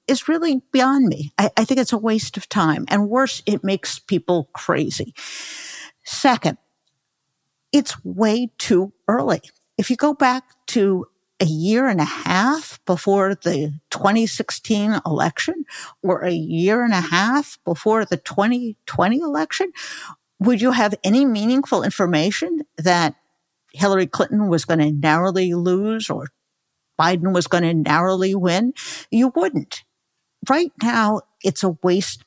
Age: 50-69